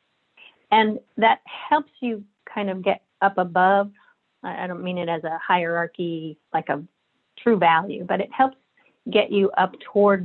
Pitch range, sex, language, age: 175-205 Hz, female, English, 40-59